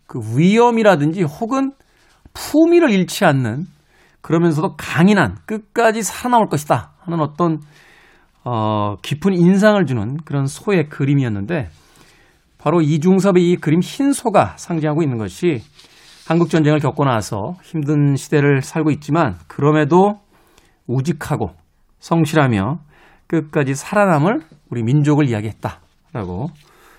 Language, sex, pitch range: Korean, male, 130-180 Hz